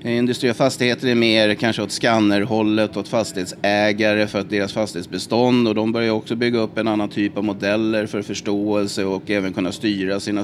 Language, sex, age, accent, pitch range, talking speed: Swedish, male, 30-49, native, 100-120 Hz, 170 wpm